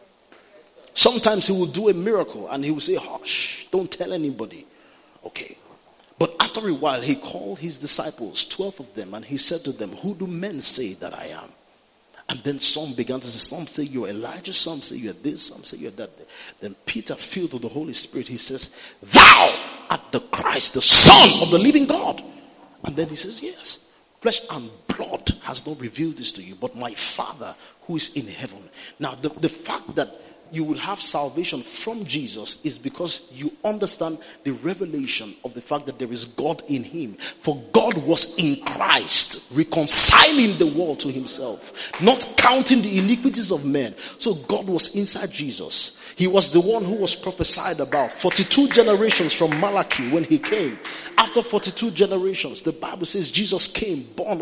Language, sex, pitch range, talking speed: English, male, 150-210 Hz, 185 wpm